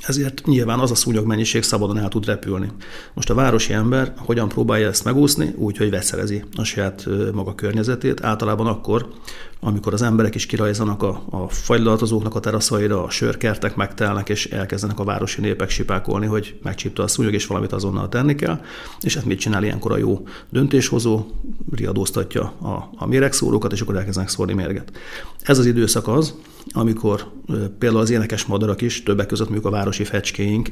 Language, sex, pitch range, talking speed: Hungarian, male, 100-120 Hz, 170 wpm